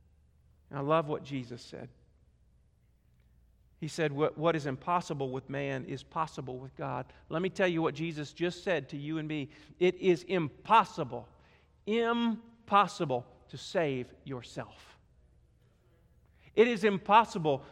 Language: English